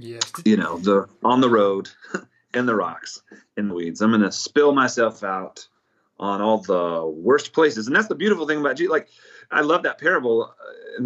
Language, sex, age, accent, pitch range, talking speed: English, male, 30-49, American, 100-150 Hz, 190 wpm